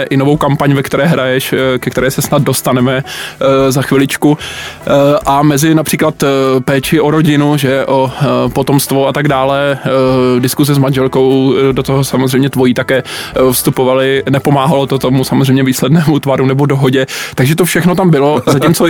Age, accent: 20-39, native